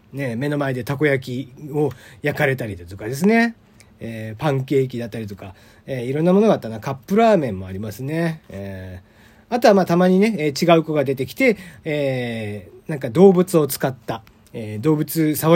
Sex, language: male, Japanese